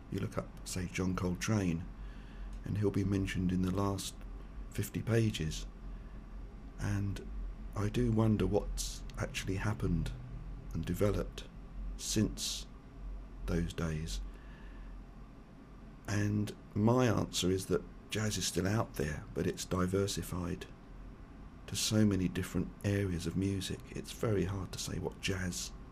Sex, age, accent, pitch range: male, 50-69, British, 90-110 Hz